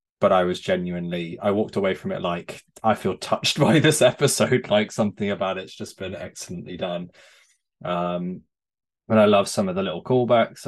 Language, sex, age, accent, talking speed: English, male, 20-39, British, 185 wpm